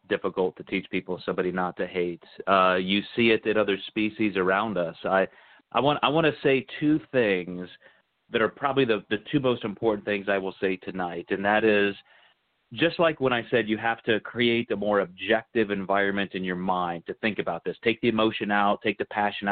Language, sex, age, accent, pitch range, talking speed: English, male, 30-49, American, 100-125 Hz, 210 wpm